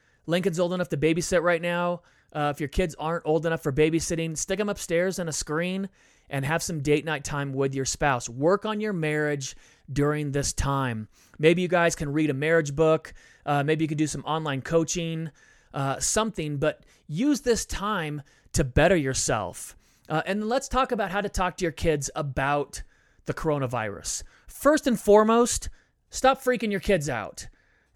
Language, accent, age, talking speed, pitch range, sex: English, American, 30-49, 180 wpm, 135-180 Hz, male